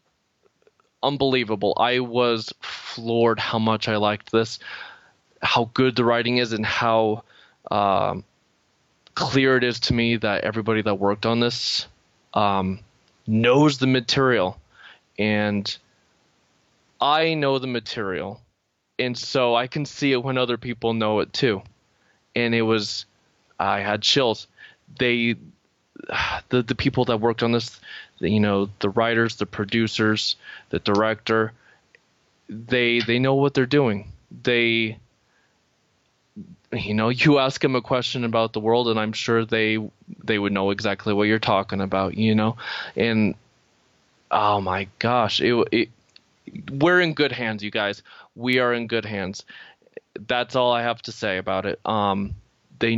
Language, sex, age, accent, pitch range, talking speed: English, male, 20-39, American, 105-125 Hz, 145 wpm